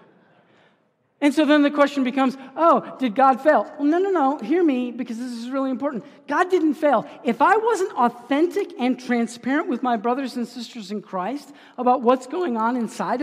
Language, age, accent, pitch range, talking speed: English, 50-69, American, 210-285 Hz, 185 wpm